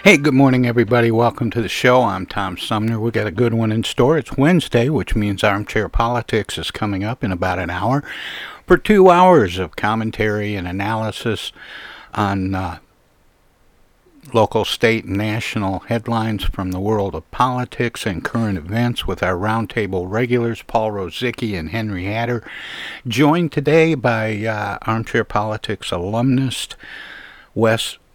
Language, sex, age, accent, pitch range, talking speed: English, male, 60-79, American, 100-120 Hz, 150 wpm